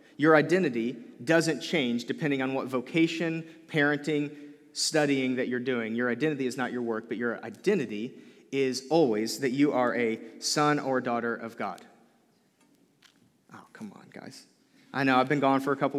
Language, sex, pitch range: English, male, 125-155 Hz